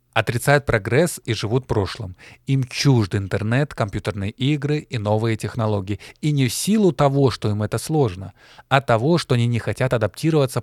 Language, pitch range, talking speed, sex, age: Russian, 115-150 Hz, 170 wpm, male, 20-39